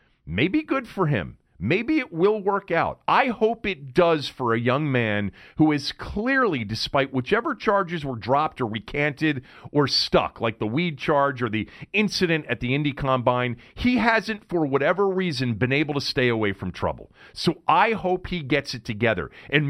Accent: American